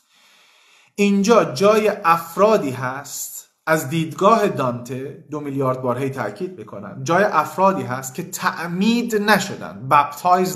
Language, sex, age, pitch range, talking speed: Persian, male, 40-59, 160-210 Hz, 115 wpm